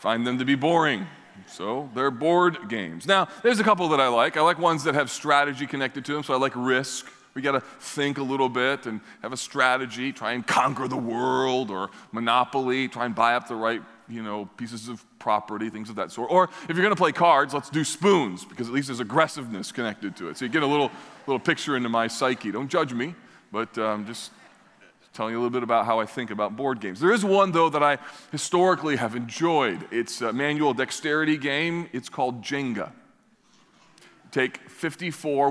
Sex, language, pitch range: male, English, 125-165 Hz